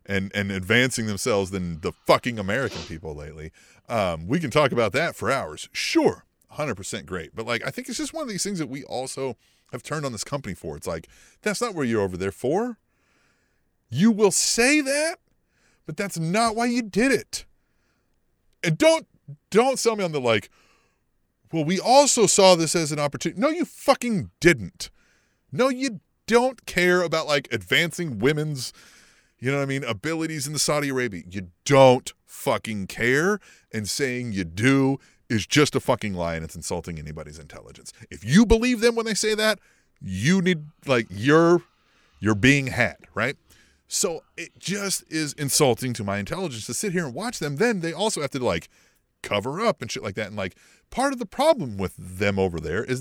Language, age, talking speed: English, 30-49, 190 wpm